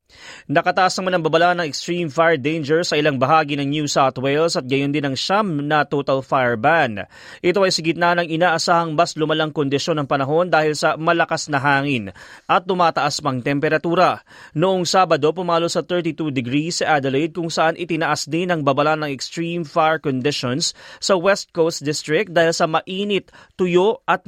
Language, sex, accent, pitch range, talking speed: Filipino, male, native, 140-170 Hz, 180 wpm